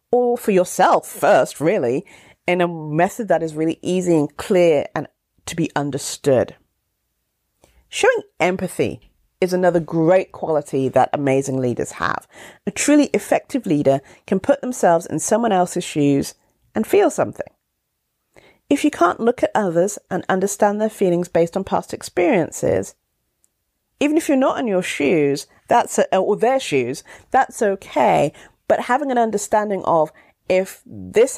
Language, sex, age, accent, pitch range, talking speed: English, female, 40-59, British, 155-225 Hz, 145 wpm